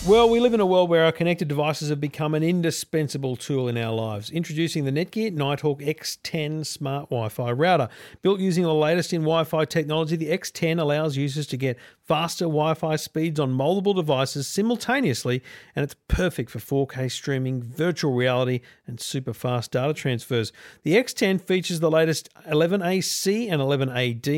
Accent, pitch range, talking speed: Australian, 135-175 Hz, 160 wpm